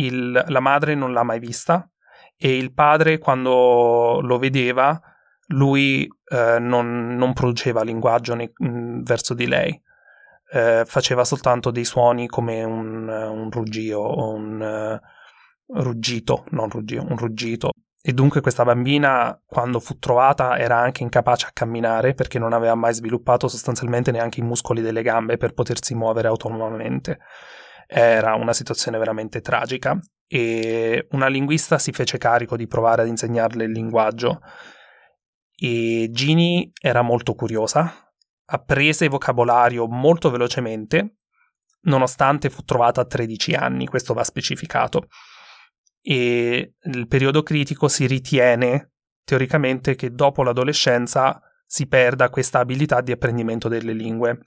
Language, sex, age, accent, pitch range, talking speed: Italian, male, 20-39, native, 115-135 Hz, 125 wpm